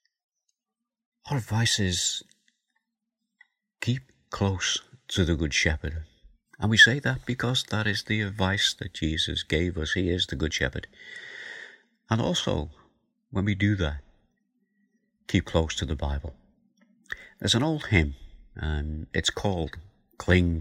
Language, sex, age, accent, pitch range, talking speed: English, male, 50-69, British, 80-115 Hz, 135 wpm